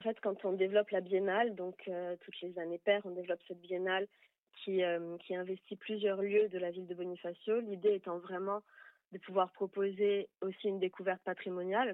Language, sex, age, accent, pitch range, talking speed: French, female, 30-49, French, 175-200 Hz, 185 wpm